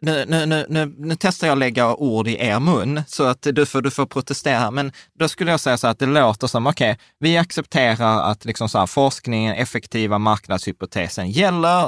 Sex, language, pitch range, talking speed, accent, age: male, Swedish, 105-135 Hz, 210 wpm, native, 20-39